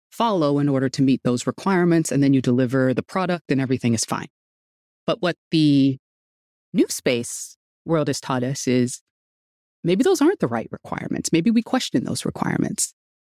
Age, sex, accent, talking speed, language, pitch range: 30-49, female, American, 170 wpm, English, 140-195 Hz